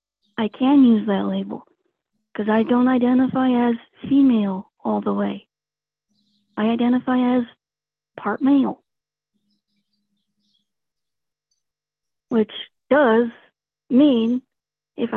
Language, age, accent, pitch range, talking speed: English, 40-59, American, 210-265 Hz, 90 wpm